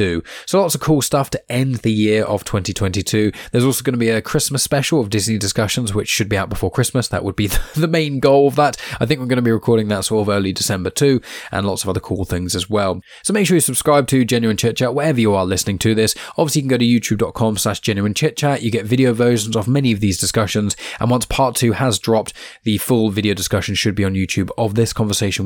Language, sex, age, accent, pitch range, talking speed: English, male, 20-39, British, 105-125 Hz, 255 wpm